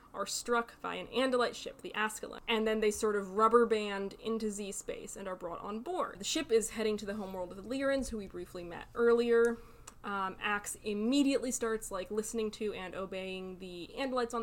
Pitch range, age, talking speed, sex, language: 195-235 Hz, 20-39, 205 wpm, female, English